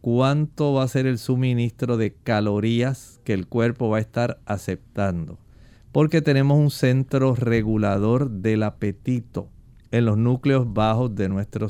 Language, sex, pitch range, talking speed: Spanish, male, 110-130 Hz, 145 wpm